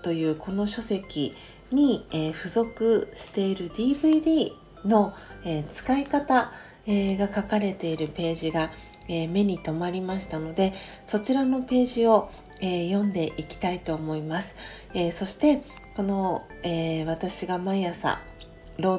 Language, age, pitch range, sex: Japanese, 40-59, 170-225 Hz, female